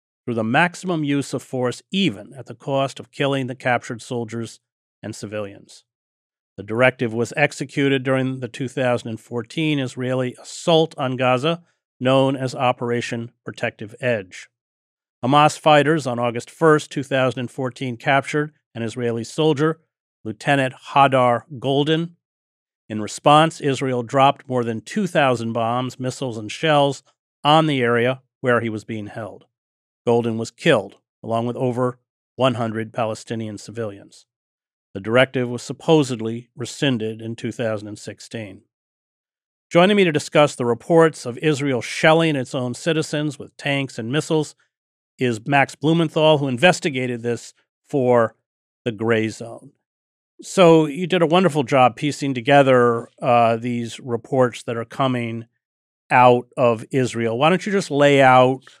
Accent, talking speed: American, 135 wpm